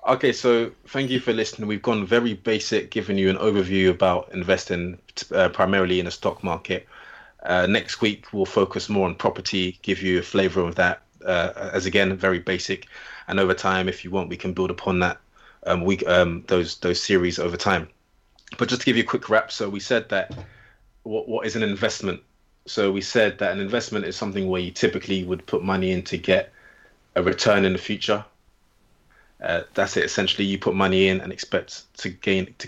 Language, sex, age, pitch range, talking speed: English, male, 20-39, 90-100 Hz, 205 wpm